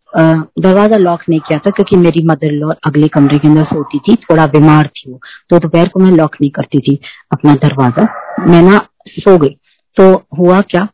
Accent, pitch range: native, 150-190 Hz